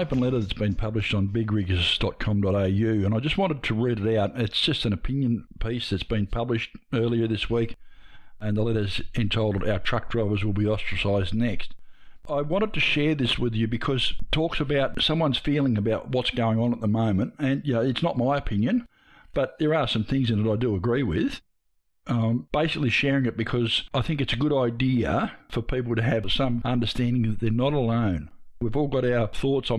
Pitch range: 105-130 Hz